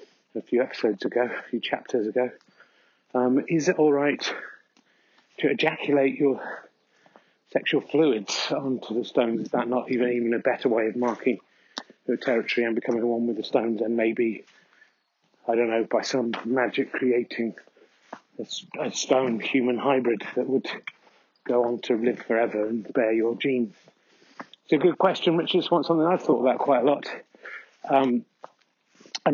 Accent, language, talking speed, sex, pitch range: British, English, 160 wpm, male, 120-155 Hz